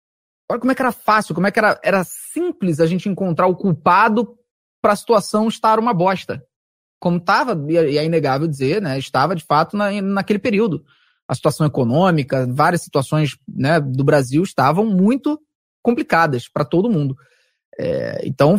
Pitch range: 155-225 Hz